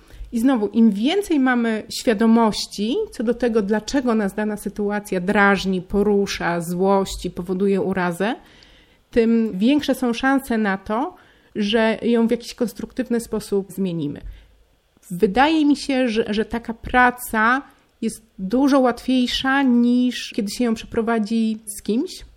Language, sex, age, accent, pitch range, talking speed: Polish, female, 30-49, native, 205-240 Hz, 130 wpm